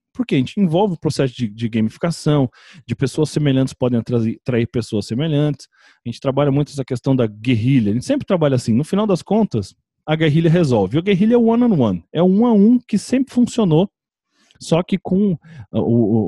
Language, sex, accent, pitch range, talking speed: Portuguese, male, Brazilian, 120-175 Hz, 205 wpm